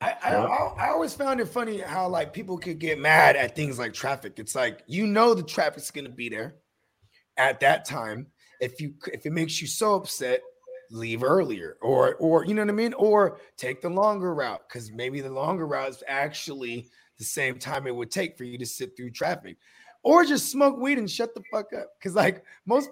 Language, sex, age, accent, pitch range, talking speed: English, male, 20-39, American, 140-220 Hz, 215 wpm